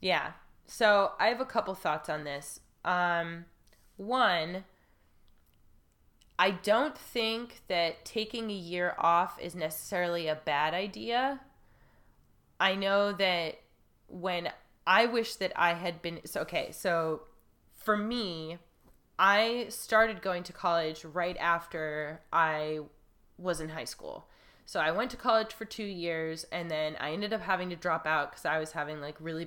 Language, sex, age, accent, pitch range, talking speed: English, female, 20-39, American, 160-195 Hz, 150 wpm